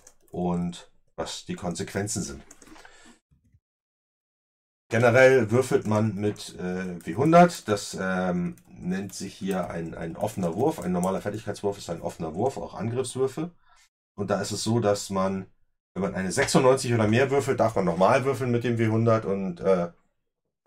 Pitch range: 90-120 Hz